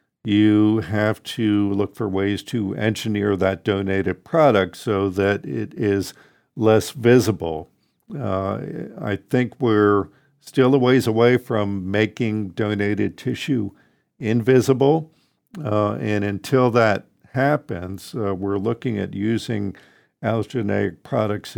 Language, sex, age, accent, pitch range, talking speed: English, male, 50-69, American, 95-115 Hz, 115 wpm